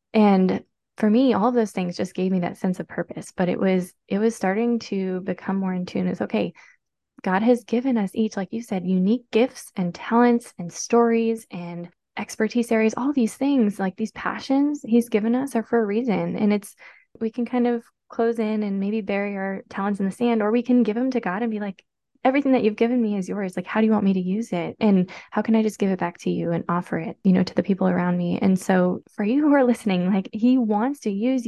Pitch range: 185-230 Hz